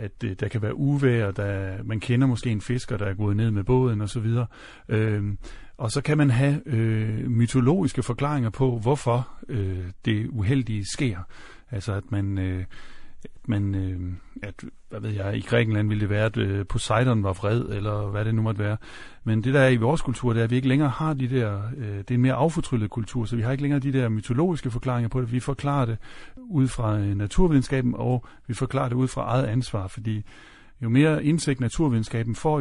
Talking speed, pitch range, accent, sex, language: 210 wpm, 105-130 Hz, native, male, Danish